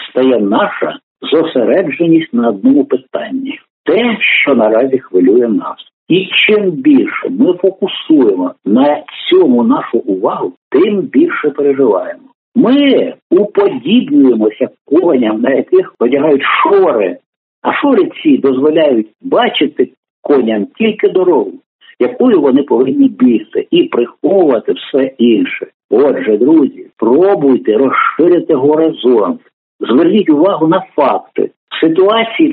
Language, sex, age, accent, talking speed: Ukrainian, male, 60-79, native, 105 wpm